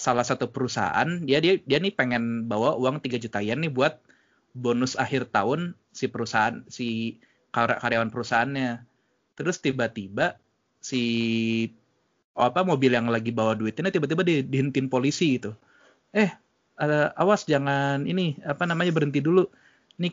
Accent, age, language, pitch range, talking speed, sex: native, 20-39, Indonesian, 125-175 Hz, 145 wpm, male